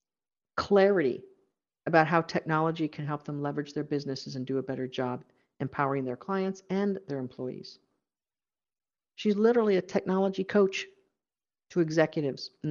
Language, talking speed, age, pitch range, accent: English, 135 wpm, 50-69, 145-170 Hz, American